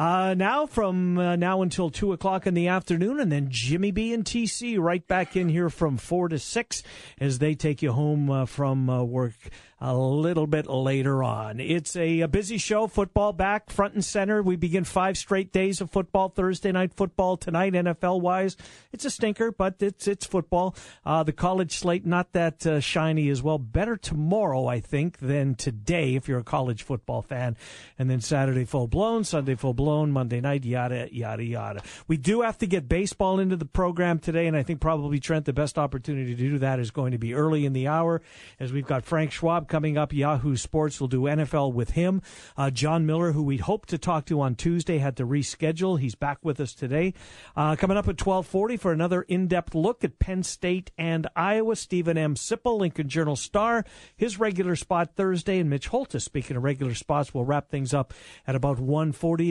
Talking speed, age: 205 wpm, 50-69